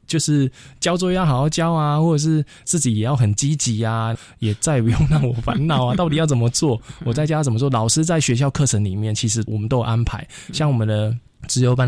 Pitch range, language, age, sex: 105-130 Hz, Chinese, 20-39, male